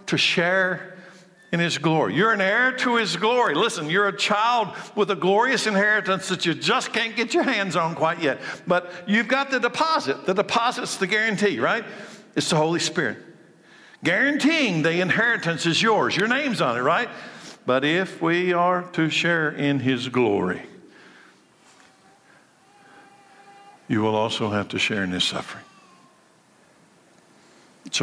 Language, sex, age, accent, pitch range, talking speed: English, male, 60-79, American, 140-225 Hz, 155 wpm